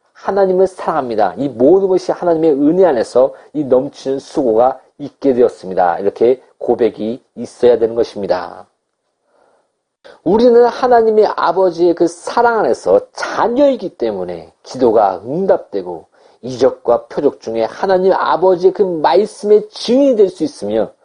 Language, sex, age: Korean, male, 40-59